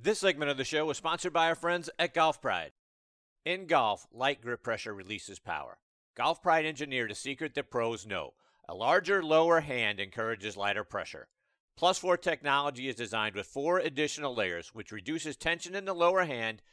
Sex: male